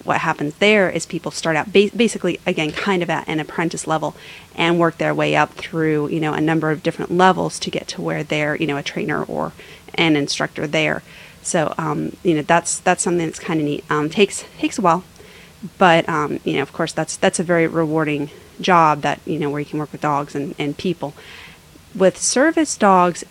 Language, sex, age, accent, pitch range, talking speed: English, female, 30-49, American, 155-180 Hz, 215 wpm